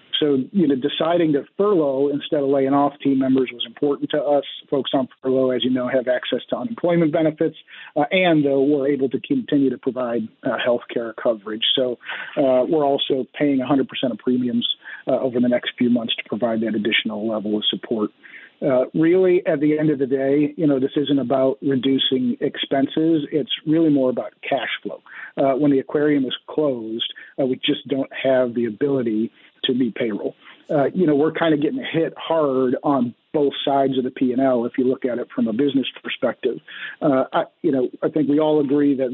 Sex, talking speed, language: male, 205 wpm, English